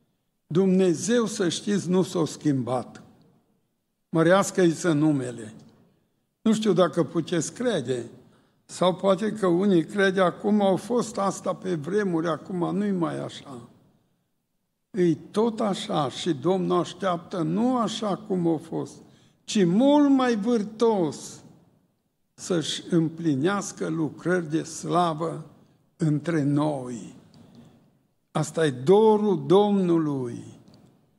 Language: Romanian